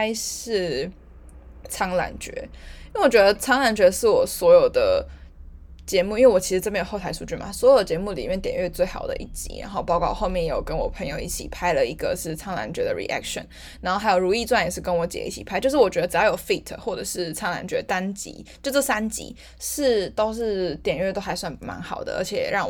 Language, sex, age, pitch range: Chinese, female, 10-29, 175-250 Hz